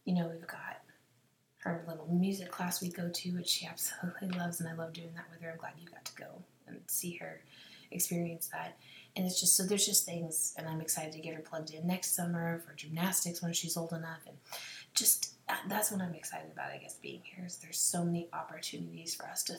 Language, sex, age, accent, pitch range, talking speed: English, female, 20-39, American, 155-180 Hz, 230 wpm